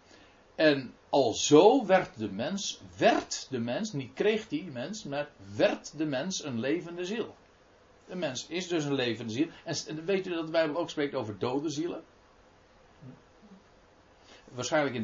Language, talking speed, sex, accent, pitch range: Dutch, 160 wpm, male, Dutch, 120-180 Hz